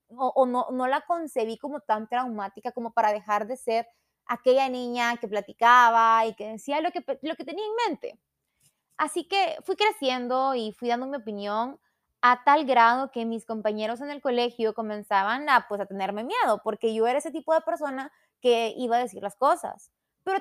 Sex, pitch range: female, 220-310 Hz